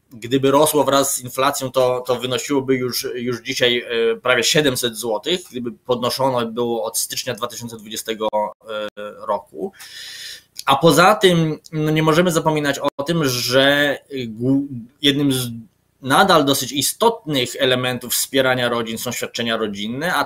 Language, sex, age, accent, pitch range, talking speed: Polish, male, 20-39, native, 125-155 Hz, 130 wpm